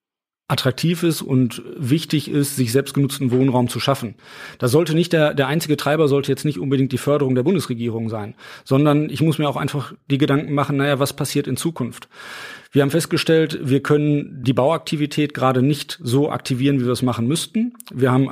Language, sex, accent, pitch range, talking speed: German, male, German, 125-150 Hz, 195 wpm